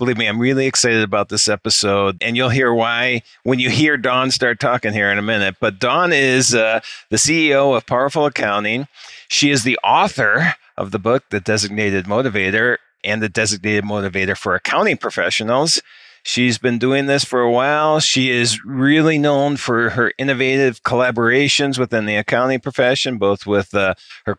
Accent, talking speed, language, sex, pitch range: American, 175 wpm, English, male, 110-135 Hz